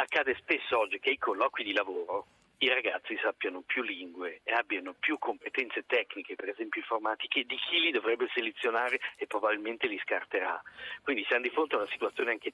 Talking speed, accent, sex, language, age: 180 wpm, native, male, Italian, 50-69